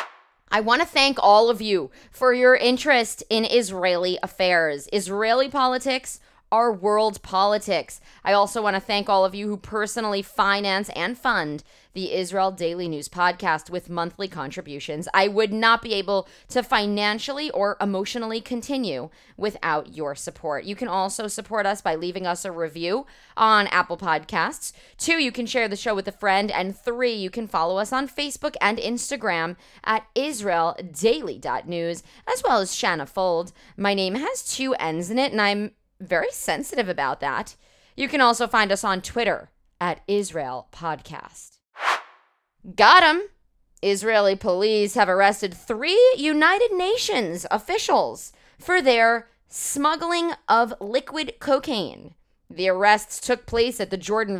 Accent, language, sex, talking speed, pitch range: American, English, female, 150 wpm, 190-250 Hz